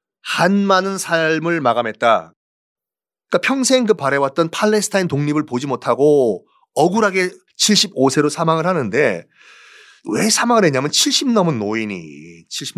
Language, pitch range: Korean, 130-215 Hz